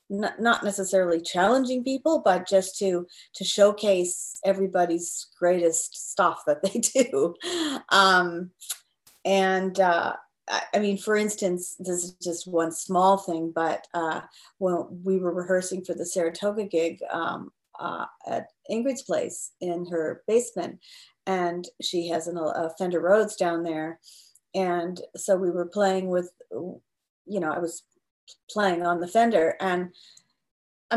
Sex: female